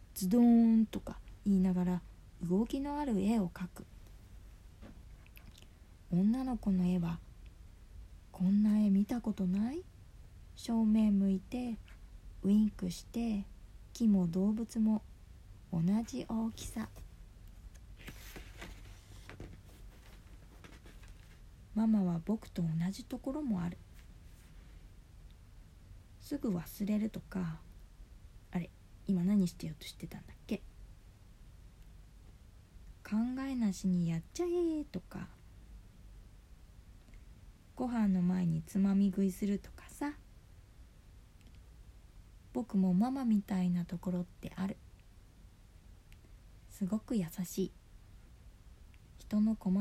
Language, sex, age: Japanese, female, 40-59